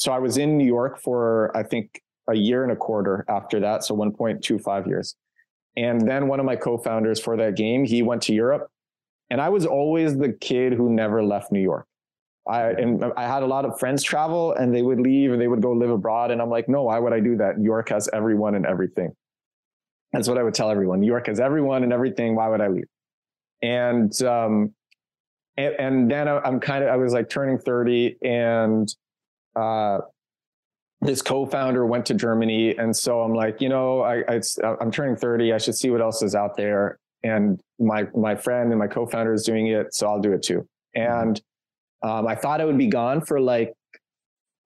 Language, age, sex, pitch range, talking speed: English, 20-39, male, 110-130 Hz, 210 wpm